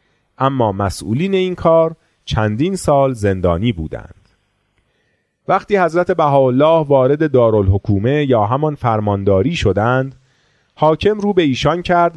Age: 30-49